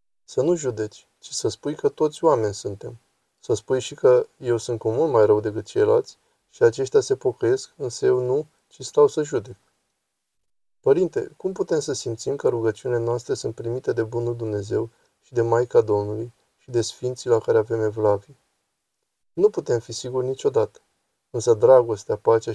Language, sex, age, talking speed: Romanian, male, 20-39, 175 wpm